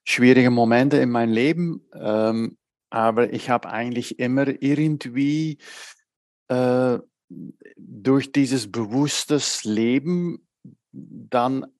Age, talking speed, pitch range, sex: 50-69, 90 wpm, 120-155 Hz, male